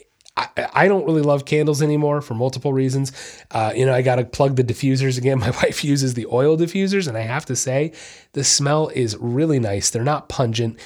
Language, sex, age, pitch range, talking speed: English, male, 30-49, 120-155 Hz, 210 wpm